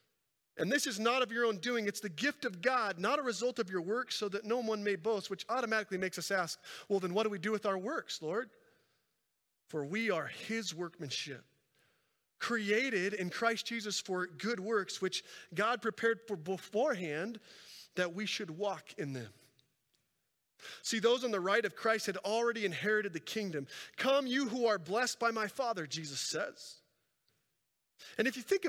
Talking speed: 185 wpm